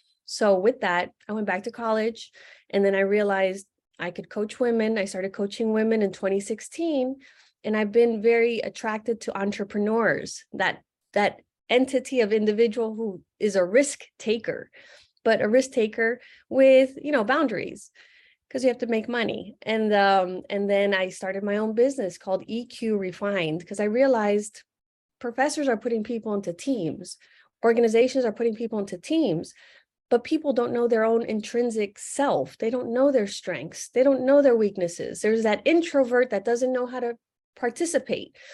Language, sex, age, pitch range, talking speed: English, female, 20-39, 205-255 Hz, 165 wpm